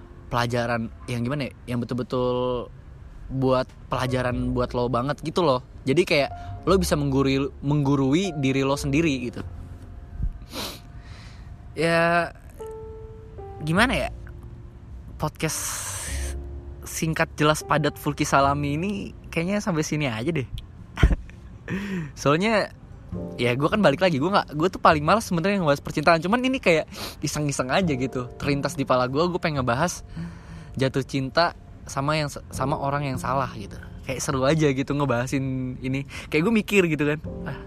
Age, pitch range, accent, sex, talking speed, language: 20-39, 110-145 Hz, native, male, 140 wpm, Indonesian